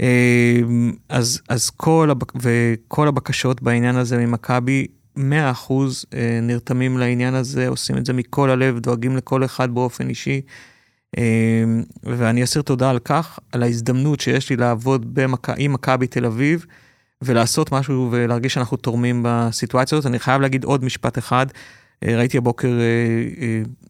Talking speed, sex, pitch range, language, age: 135 wpm, male, 115-130 Hz, Hebrew, 30-49